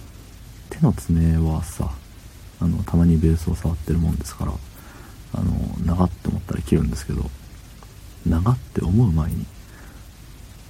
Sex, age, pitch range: male, 50-69, 85-105 Hz